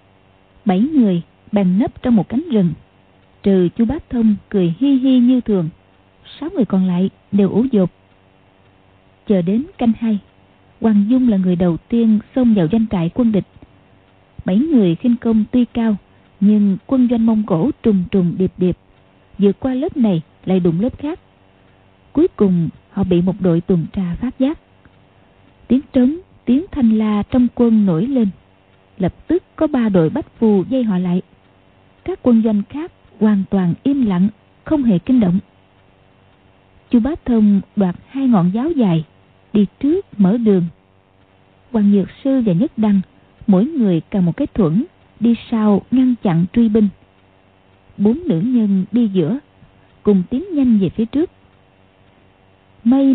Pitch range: 165-240 Hz